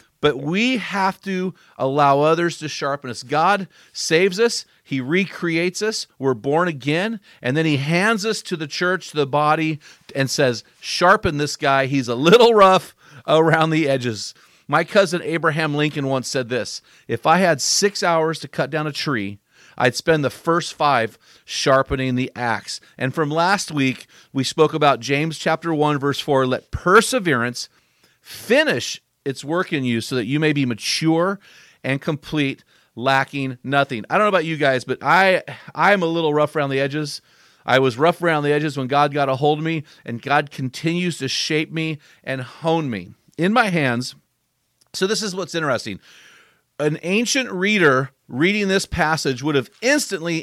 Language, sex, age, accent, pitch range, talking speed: English, male, 40-59, American, 135-175 Hz, 180 wpm